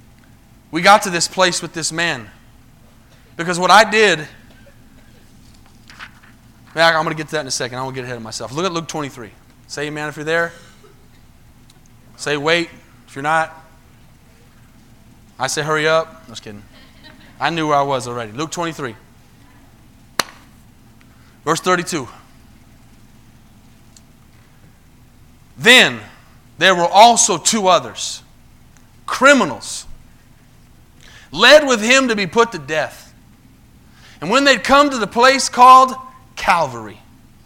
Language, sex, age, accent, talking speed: English, male, 30-49, American, 130 wpm